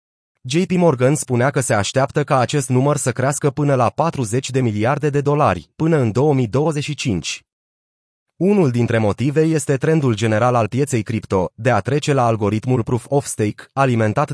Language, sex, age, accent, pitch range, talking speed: Romanian, male, 30-49, native, 120-150 Hz, 155 wpm